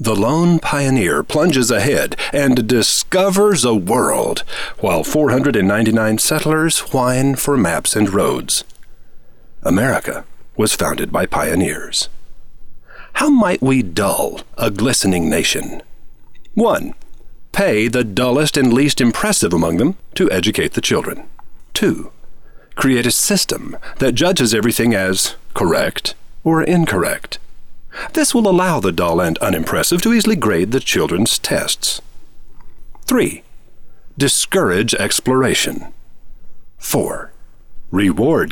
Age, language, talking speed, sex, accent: 40-59, English, 110 wpm, male, American